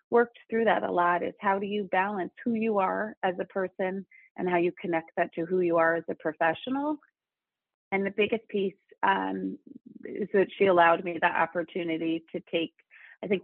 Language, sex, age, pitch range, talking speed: English, female, 30-49, 170-205 Hz, 195 wpm